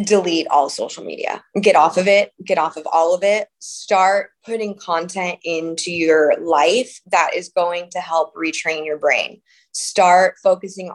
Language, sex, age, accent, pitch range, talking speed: English, female, 20-39, American, 165-205 Hz, 165 wpm